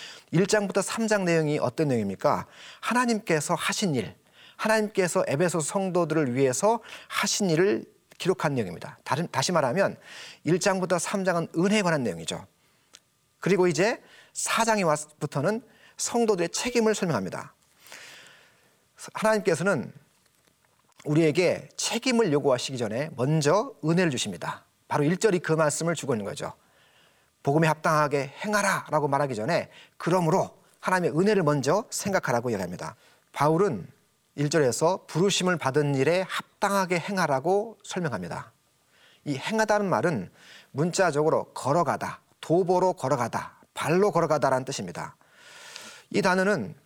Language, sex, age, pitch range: Korean, male, 40-59, 155-205 Hz